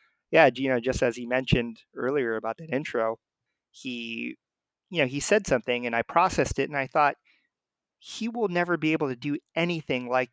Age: 30-49